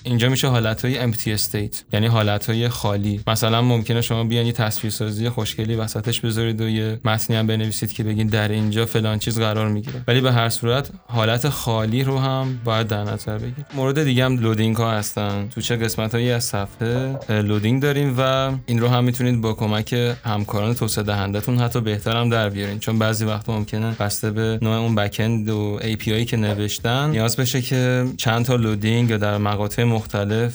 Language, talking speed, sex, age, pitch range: Persian, 185 wpm, male, 20-39, 105-120 Hz